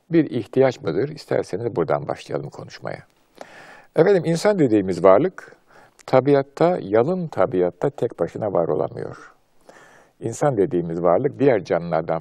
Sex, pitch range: male, 95-145 Hz